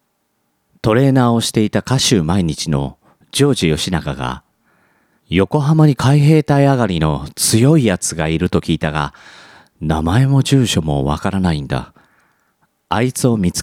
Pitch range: 80-115 Hz